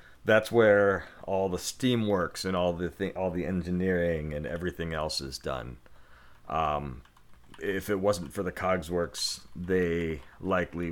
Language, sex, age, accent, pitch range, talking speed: English, male, 40-59, American, 75-95 Hz, 145 wpm